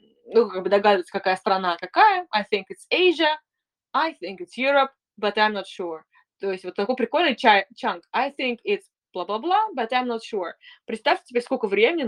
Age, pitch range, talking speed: 20-39, 185-245 Hz, 190 wpm